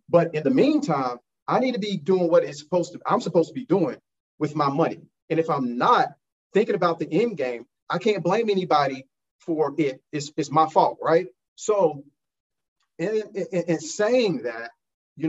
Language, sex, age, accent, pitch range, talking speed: English, male, 40-59, American, 120-160 Hz, 190 wpm